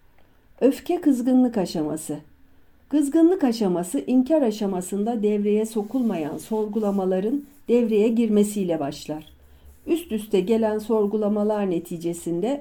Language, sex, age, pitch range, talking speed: Turkish, female, 60-79, 175-250 Hz, 85 wpm